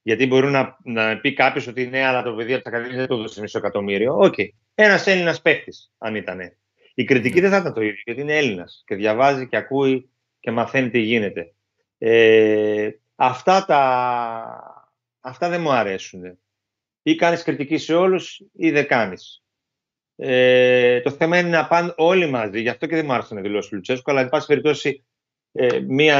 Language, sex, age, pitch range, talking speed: Greek, male, 30-49, 115-145 Hz, 190 wpm